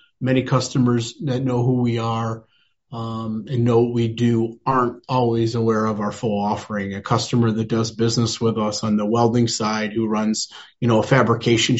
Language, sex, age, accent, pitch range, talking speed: English, male, 30-49, American, 110-120 Hz, 190 wpm